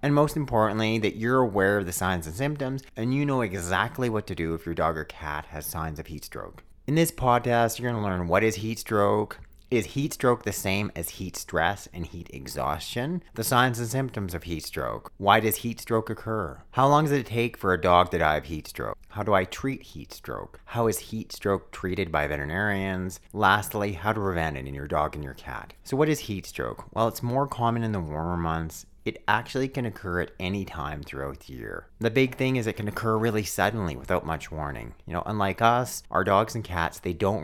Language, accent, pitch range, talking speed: English, American, 85-115 Hz, 230 wpm